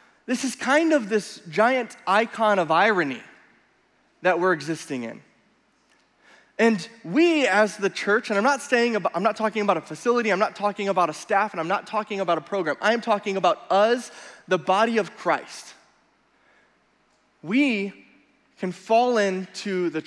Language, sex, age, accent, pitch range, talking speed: English, male, 20-39, American, 180-225 Hz, 165 wpm